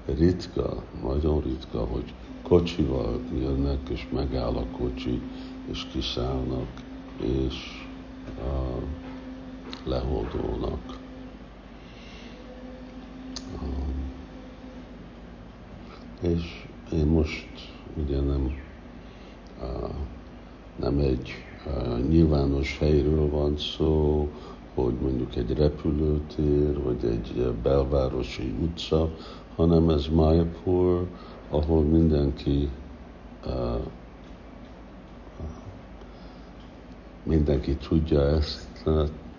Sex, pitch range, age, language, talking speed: male, 65-80 Hz, 60-79, Hungarian, 65 wpm